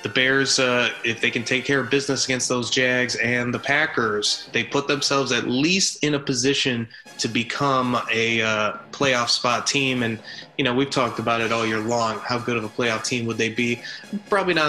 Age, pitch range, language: 20-39, 110-135 Hz, English